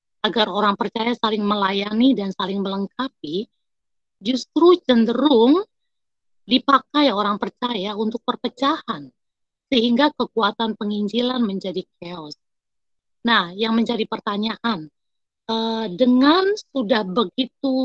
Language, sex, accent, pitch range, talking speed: Indonesian, female, native, 205-270 Hz, 95 wpm